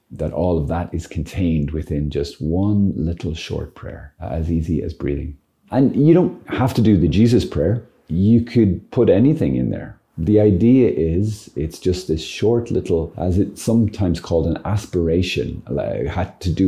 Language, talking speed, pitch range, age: English, 175 wpm, 80-100 Hz, 30-49